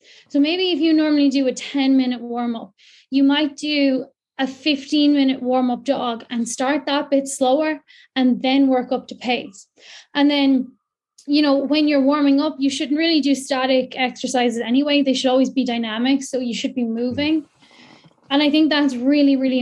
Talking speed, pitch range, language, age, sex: 190 wpm, 250-285 Hz, English, 10-29, female